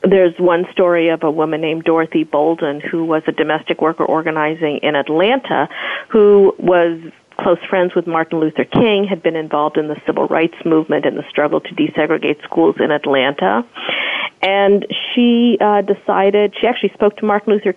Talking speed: 170 wpm